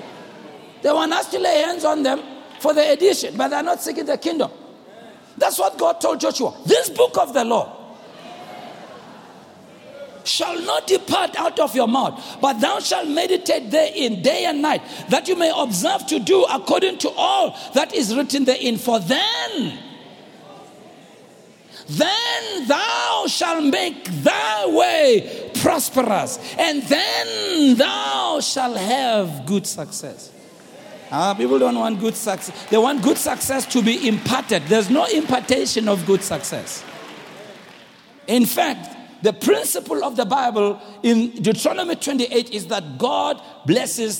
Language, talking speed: English, 145 wpm